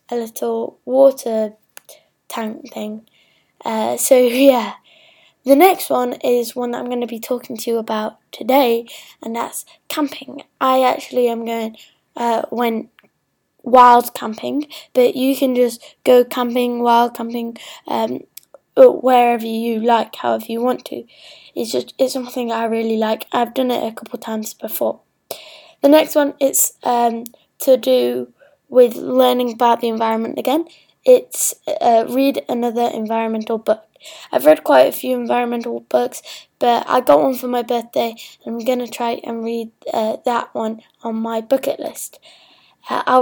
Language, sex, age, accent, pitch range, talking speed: English, female, 10-29, British, 230-270 Hz, 155 wpm